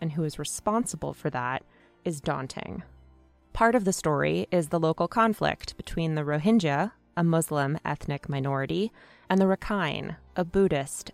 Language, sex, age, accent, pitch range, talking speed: English, female, 20-39, American, 145-190 Hz, 150 wpm